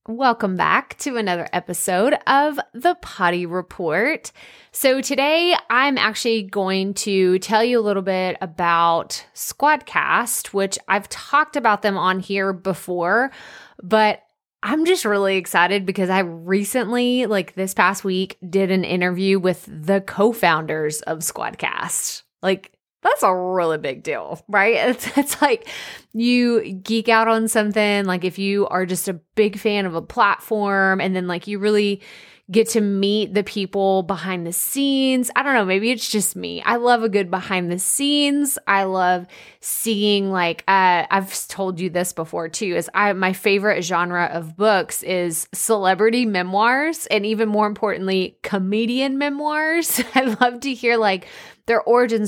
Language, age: English, 20-39